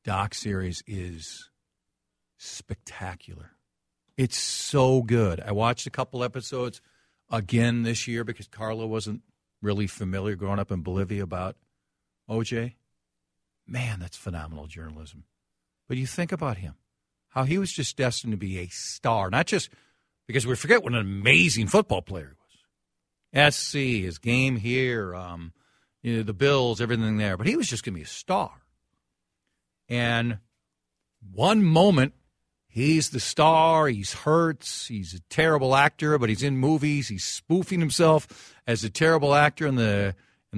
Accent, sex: American, male